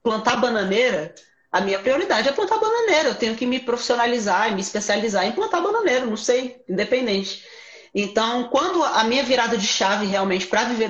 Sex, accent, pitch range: female, Brazilian, 200-255 Hz